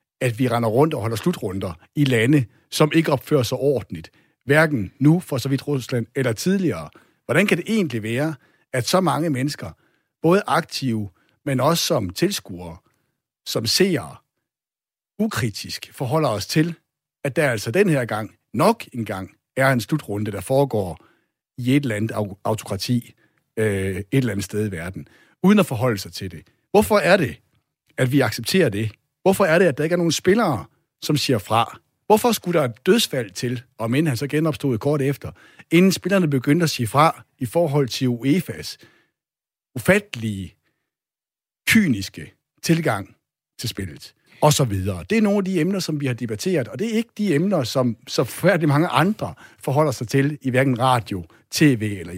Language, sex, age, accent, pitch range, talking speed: Danish, male, 60-79, native, 115-160 Hz, 175 wpm